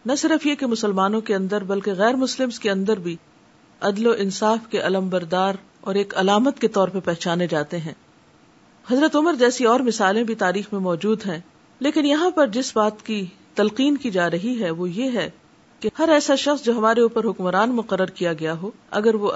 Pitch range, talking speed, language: 185-240 Hz, 210 wpm, Urdu